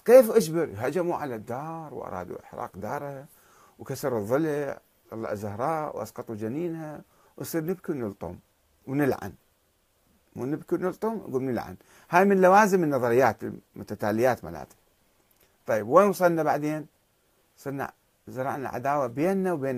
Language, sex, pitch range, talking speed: Arabic, male, 120-180 Hz, 105 wpm